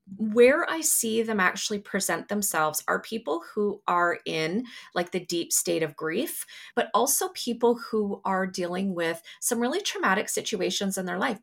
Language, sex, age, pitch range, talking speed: English, female, 30-49, 175-225 Hz, 170 wpm